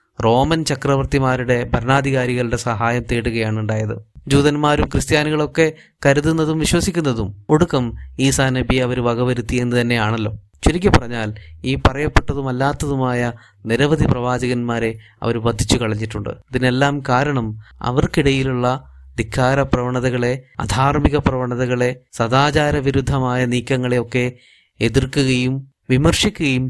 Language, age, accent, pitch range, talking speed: Malayalam, 20-39, native, 115-135 Hz, 85 wpm